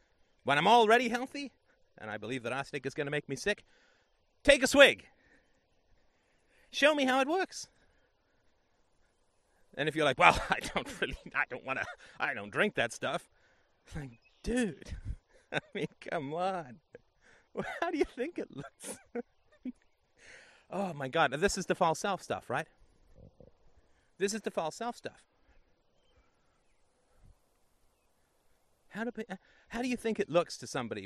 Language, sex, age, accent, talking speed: English, male, 30-49, American, 155 wpm